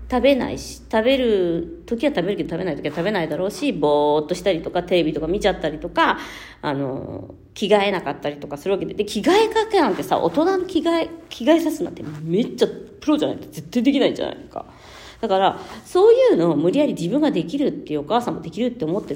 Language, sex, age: Japanese, female, 40-59